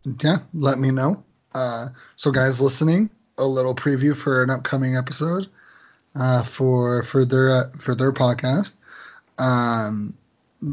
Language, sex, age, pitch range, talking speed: English, male, 20-39, 130-150 Hz, 135 wpm